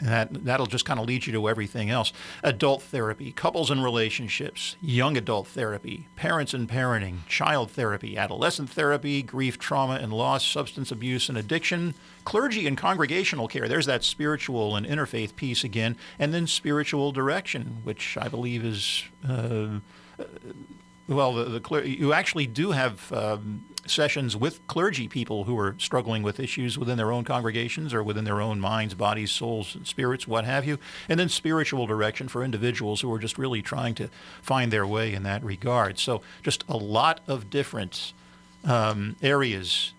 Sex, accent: male, American